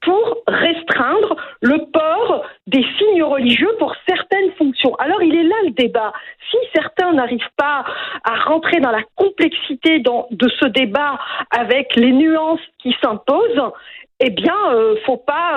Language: French